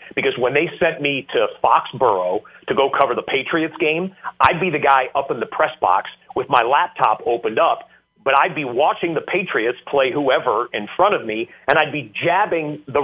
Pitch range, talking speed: 130-195 Hz, 200 wpm